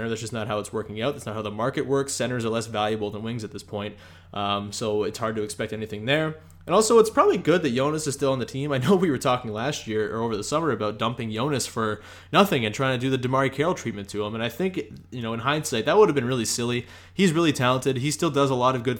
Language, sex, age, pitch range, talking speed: English, male, 20-39, 110-135 Hz, 285 wpm